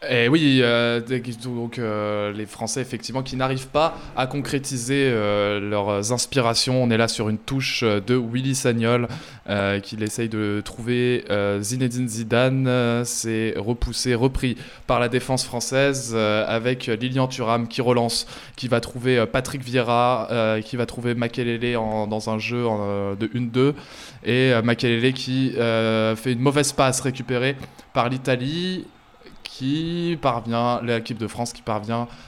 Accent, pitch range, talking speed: French, 110-130 Hz, 150 wpm